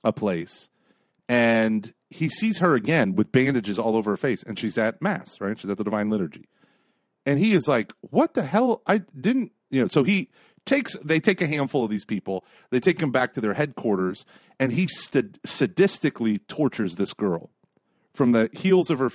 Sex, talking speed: male, 195 wpm